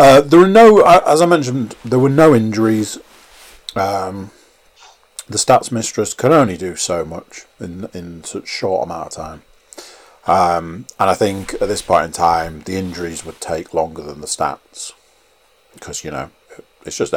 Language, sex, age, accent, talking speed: English, male, 40-59, British, 175 wpm